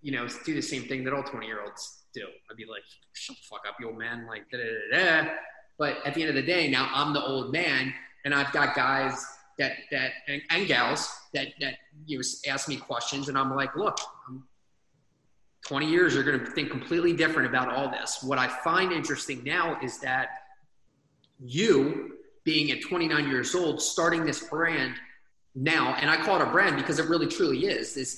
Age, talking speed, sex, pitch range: 30-49, 210 wpm, male, 135-175 Hz